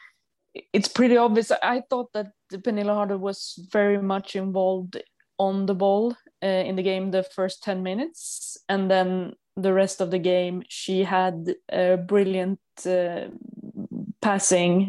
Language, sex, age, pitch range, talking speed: English, female, 20-39, 180-205 Hz, 145 wpm